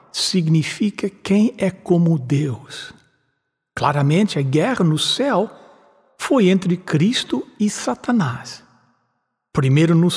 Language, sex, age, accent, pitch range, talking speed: English, male, 60-79, Brazilian, 135-210 Hz, 100 wpm